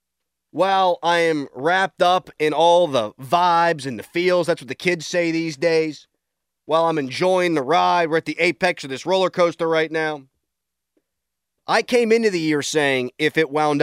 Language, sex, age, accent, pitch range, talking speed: English, male, 30-49, American, 125-175 Hz, 185 wpm